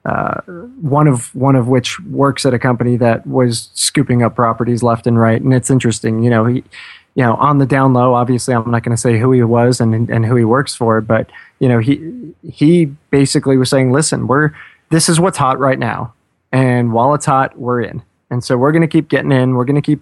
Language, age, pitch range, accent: English, 20-39, 120-135 Hz, American